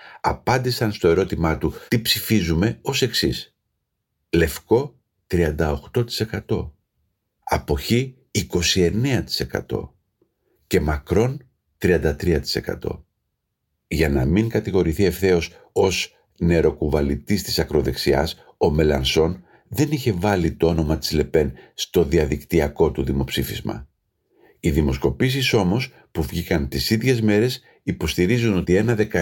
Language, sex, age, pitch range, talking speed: Greek, male, 50-69, 80-115 Hz, 100 wpm